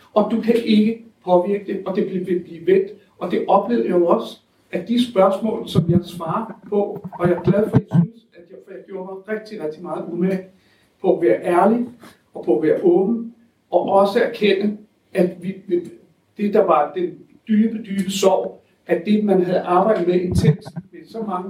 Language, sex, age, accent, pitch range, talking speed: Danish, male, 60-79, native, 175-215 Hz, 195 wpm